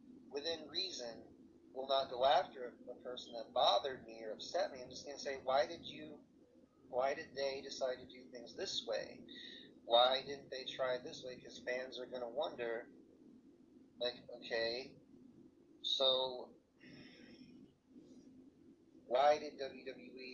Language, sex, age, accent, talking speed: English, male, 30-49, American, 145 wpm